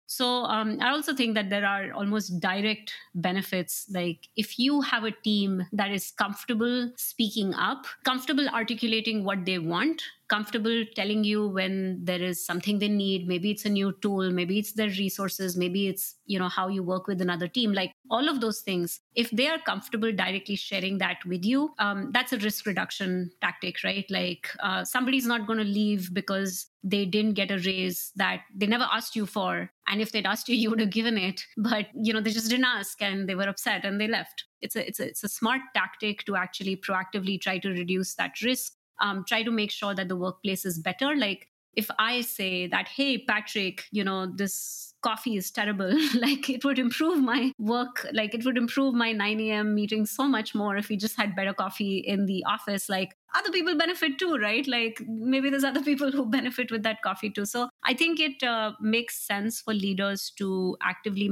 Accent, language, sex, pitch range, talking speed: Indian, English, female, 195-235 Hz, 205 wpm